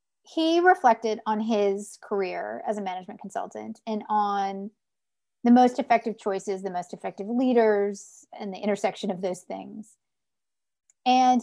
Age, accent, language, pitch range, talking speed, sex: 40-59, American, English, 195-240 Hz, 135 wpm, female